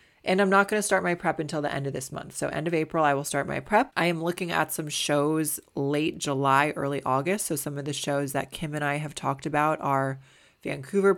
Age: 20-39